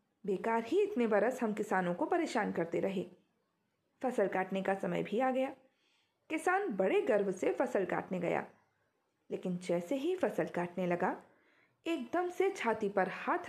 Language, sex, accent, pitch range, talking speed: Hindi, female, native, 195-285 Hz, 155 wpm